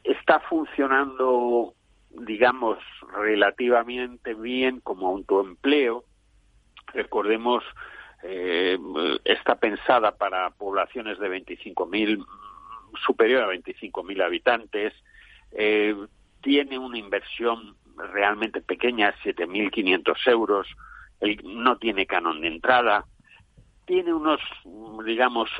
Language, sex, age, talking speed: Spanish, male, 60-79, 80 wpm